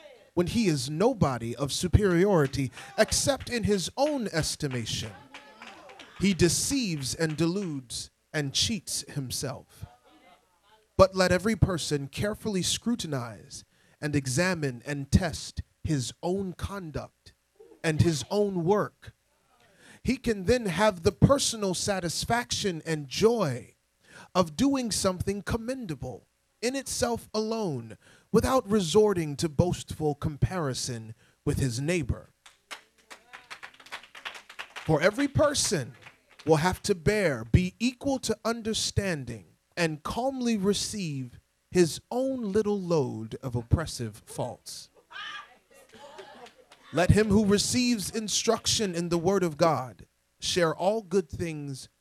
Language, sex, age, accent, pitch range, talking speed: English, male, 40-59, American, 135-215 Hz, 110 wpm